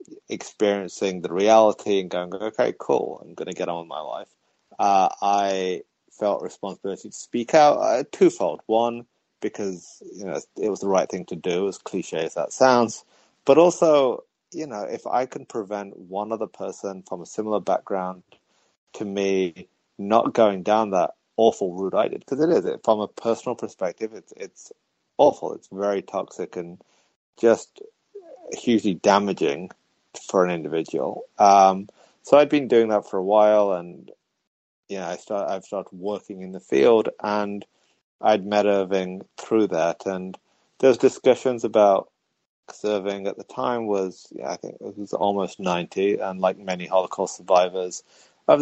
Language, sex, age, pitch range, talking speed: English, male, 30-49, 95-110 Hz, 165 wpm